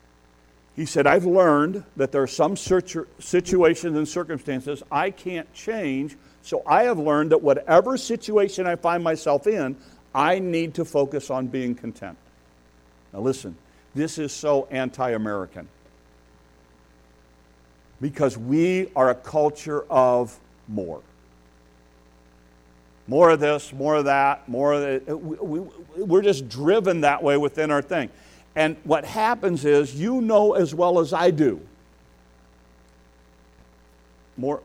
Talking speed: 130 wpm